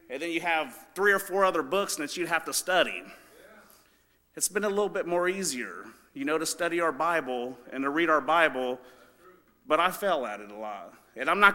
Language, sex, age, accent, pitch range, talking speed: English, male, 40-59, American, 150-190 Hz, 220 wpm